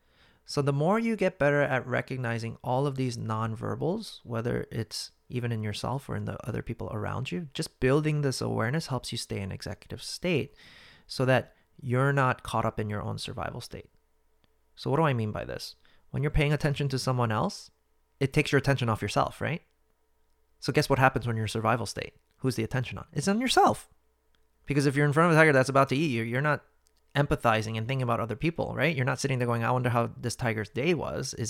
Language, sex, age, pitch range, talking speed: English, male, 30-49, 110-145 Hz, 225 wpm